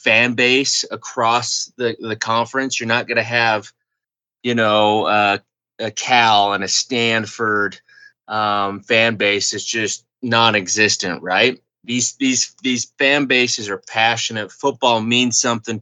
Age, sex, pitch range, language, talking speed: 20-39, male, 110-125 Hz, English, 135 wpm